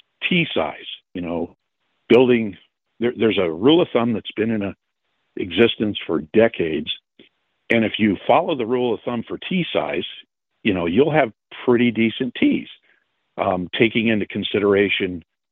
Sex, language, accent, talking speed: male, English, American, 135 wpm